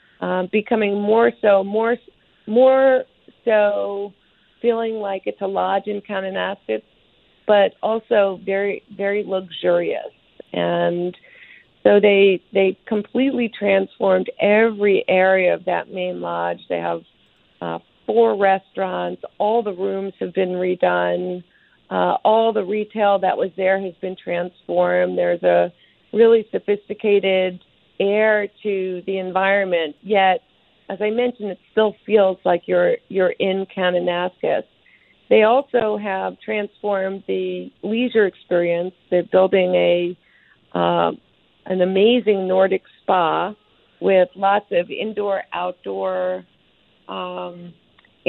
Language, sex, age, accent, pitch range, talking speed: English, female, 50-69, American, 180-210 Hz, 115 wpm